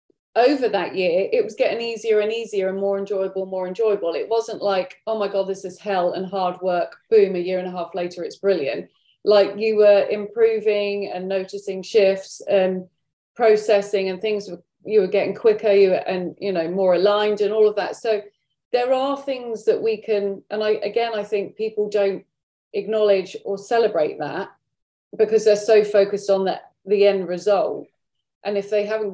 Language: English